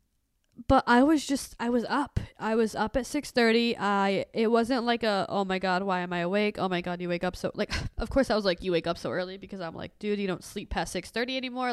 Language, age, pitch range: English, 20-39, 190-245 Hz